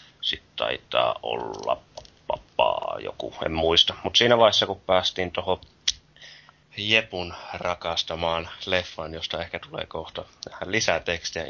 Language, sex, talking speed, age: Finnish, male, 115 wpm, 30-49